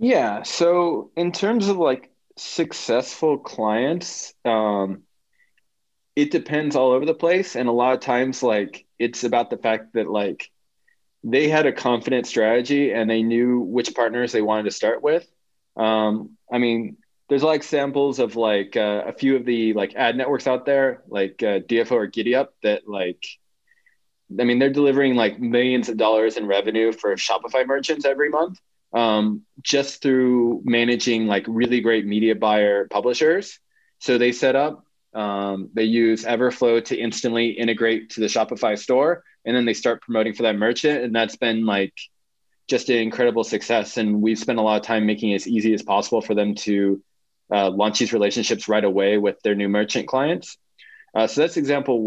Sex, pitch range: male, 110-135 Hz